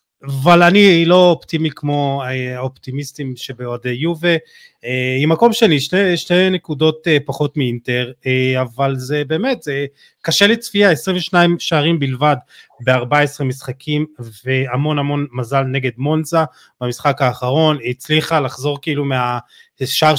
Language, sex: Hebrew, male